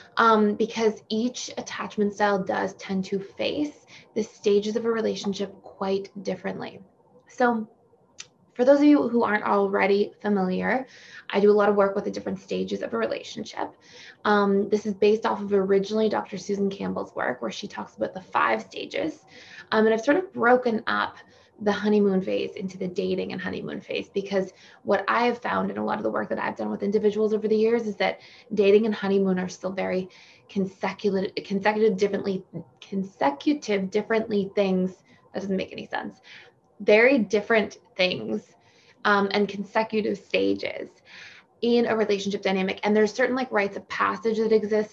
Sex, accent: female, American